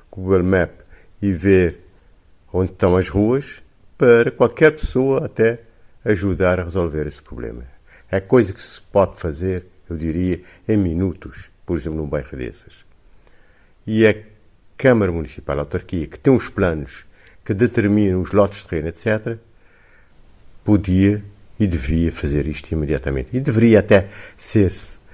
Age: 50-69